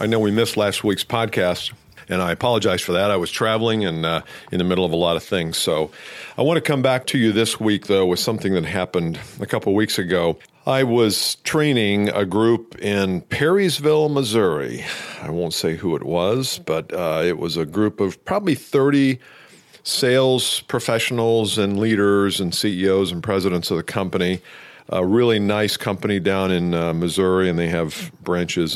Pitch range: 90-115 Hz